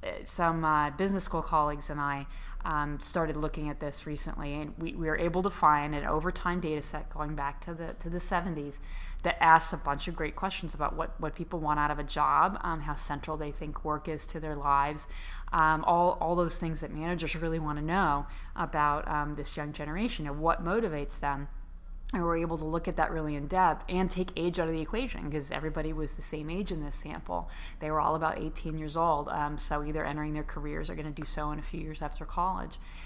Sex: female